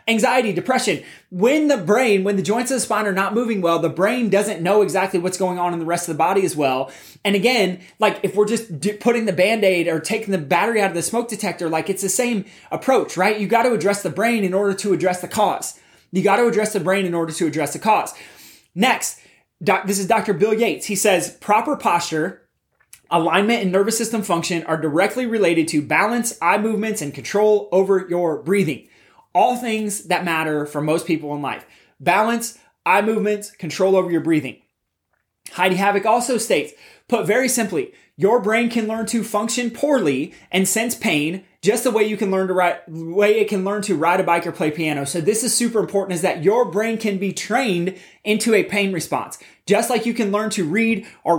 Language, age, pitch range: English, 20-39, 175-220 Hz